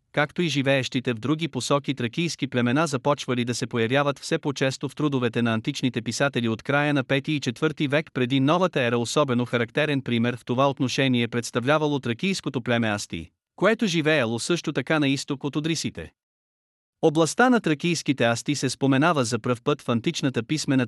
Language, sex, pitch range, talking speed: Bulgarian, male, 120-150 Hz, 170 wpm